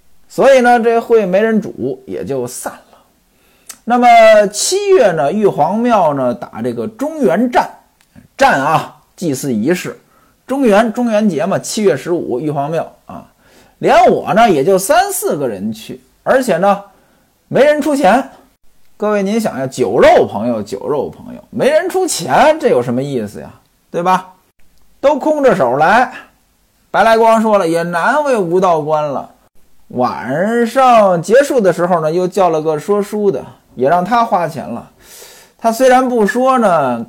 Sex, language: male, Chinese